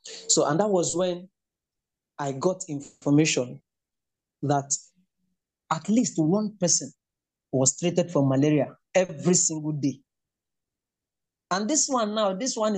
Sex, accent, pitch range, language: male, Nigerian, 155-215 Hz, English